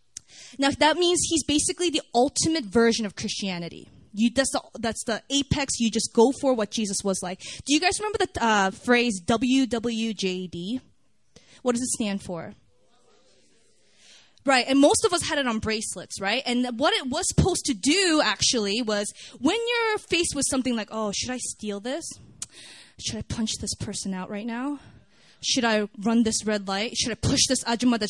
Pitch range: 210-290 Hz